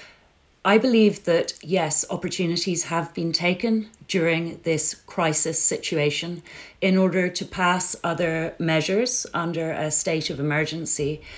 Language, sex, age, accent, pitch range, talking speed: English, female, 30-49, British, 150-185 Hz, 120 wpm